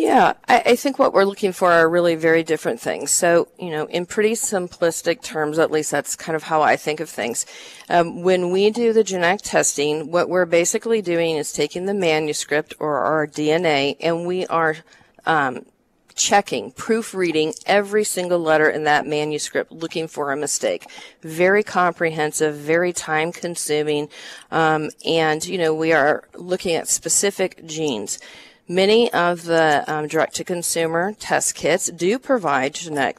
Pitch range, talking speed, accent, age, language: 155-190 Hz, 160 wpm, American, 40-59, English